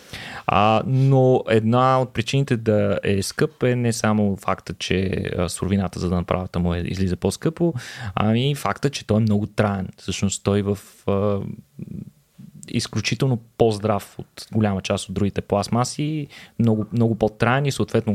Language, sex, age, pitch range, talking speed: Bulgarian, male, 20-39, 95-125 Hz, 150 wpm